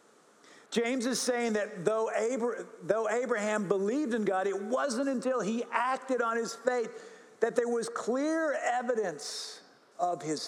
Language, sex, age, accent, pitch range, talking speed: English, male, 50-69, American, 200-255 Hz, 145 wpm